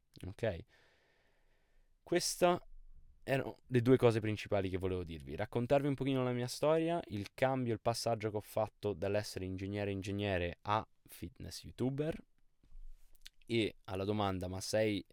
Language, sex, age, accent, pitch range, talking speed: Italian, male, 20-39, native, 90-120 Hz, 135 wpm